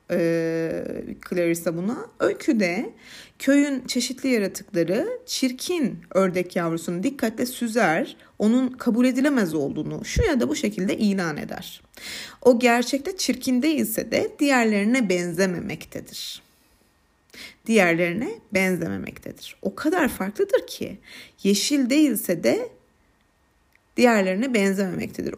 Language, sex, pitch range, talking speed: Turkish, female, 195-265 Hz, 95 wpm